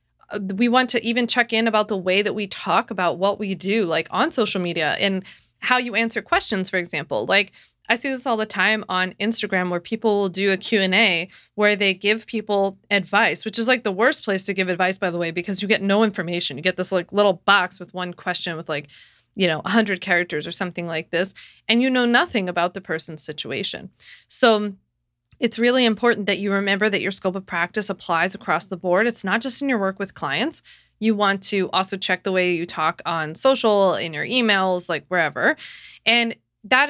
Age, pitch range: 30-49, 180-220 Hz